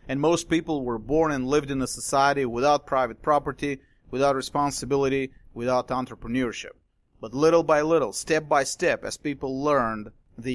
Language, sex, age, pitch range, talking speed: English, male, 30-49, 125-155 Hz, 160 wpm